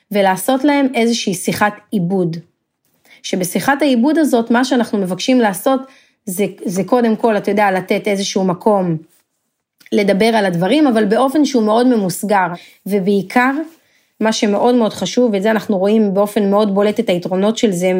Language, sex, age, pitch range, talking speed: Hebrew, female, 30-49, 200-255 Hz, 150 wpm